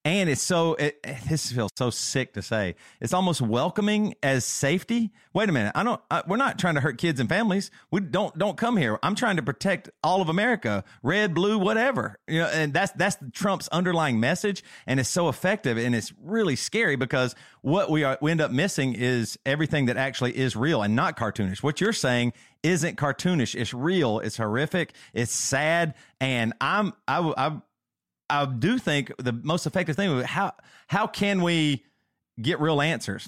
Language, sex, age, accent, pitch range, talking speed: English, male, 40-59, American, 125-170 Hz, 195 wpm